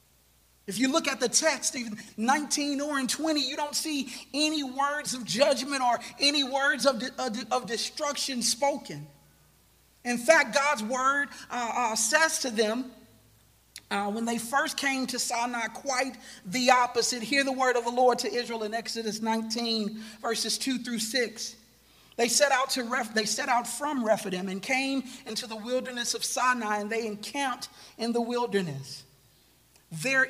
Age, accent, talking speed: 40-59, American, 160 wpm